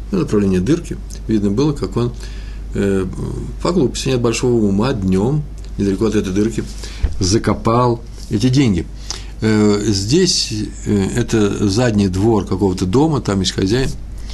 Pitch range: 100-120 Hz